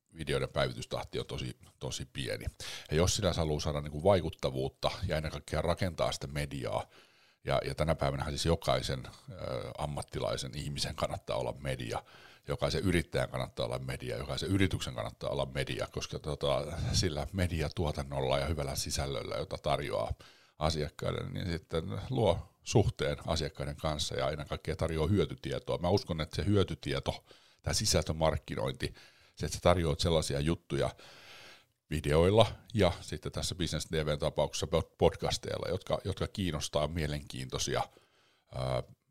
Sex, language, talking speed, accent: male, Finnish, 125 wpm, native